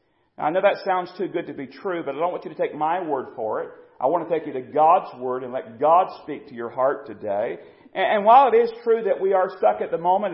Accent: American